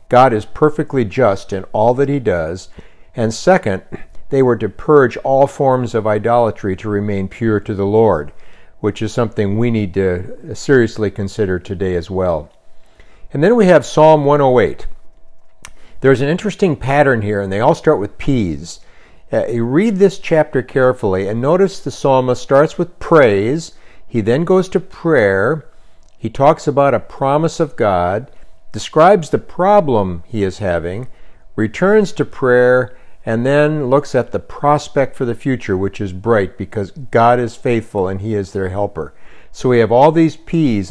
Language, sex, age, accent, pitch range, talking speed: English, male, 60-79, American, 105-145 Hz, 165 wpm